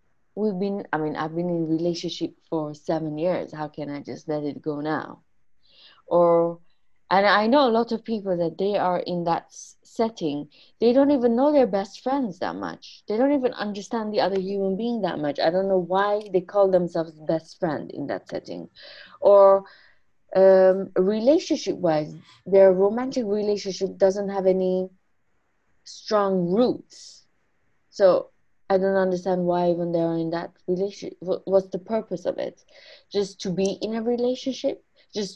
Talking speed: 170 wpm